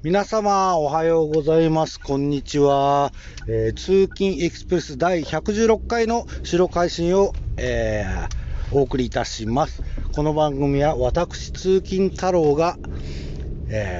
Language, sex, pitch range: Japanese, male, 105-160 Hz